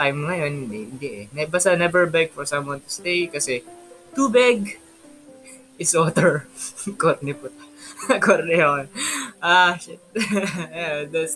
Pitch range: 150-225 Hz